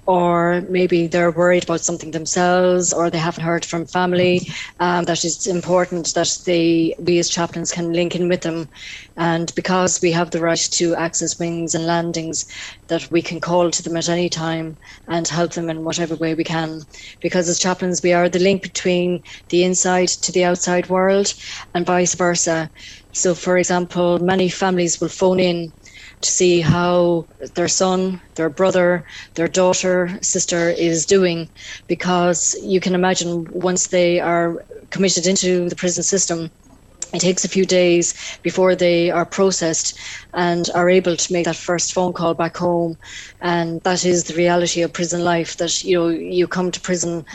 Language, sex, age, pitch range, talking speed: English, female, 30-49, 170-180 Hz, 175 wpm